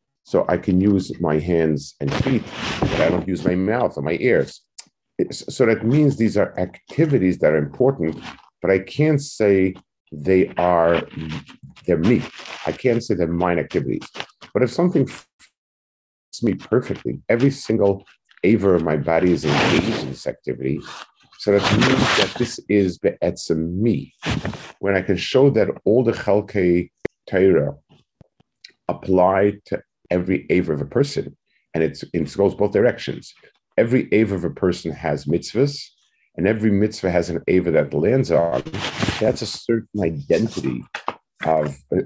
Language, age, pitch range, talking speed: English, 50-69, 80-105 Hz, 155 wpm